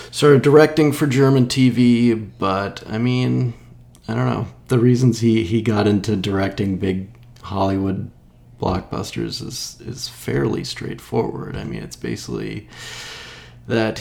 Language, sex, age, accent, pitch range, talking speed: English, male, 30-49, American, 95-130 Hz, 135 wpm